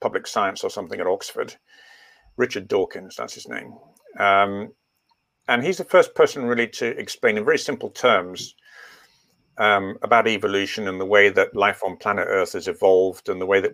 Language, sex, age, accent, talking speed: English, male, 50-69, British, 180 wpm